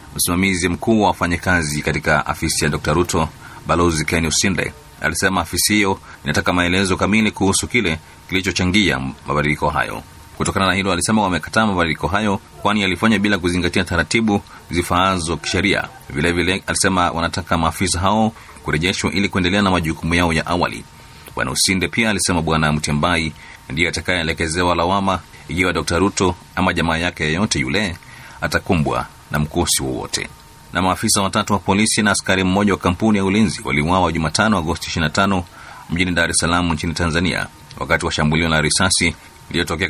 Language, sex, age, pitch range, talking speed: Swahili, male, 30-49, 80-95 Hz, 150 wpm